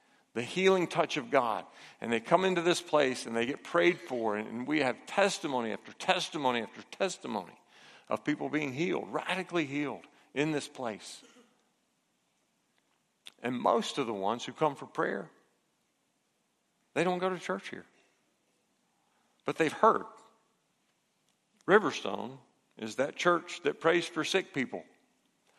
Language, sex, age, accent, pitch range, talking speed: English, male, 50-69, American, 130-185 Hz, 140 wpm